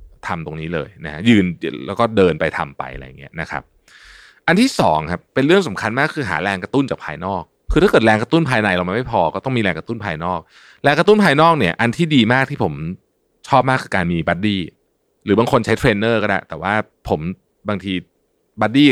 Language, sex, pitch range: Thai, male, 90-140 Hz